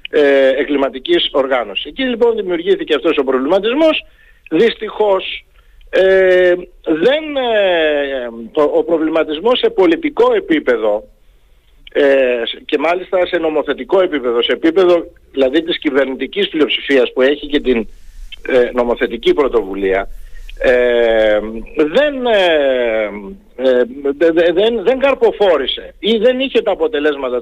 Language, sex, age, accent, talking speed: Greek, male, 50-69, native, 90 wpm